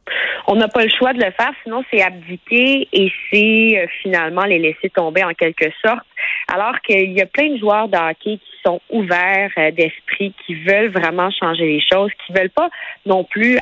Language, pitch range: French, 170-210 Hz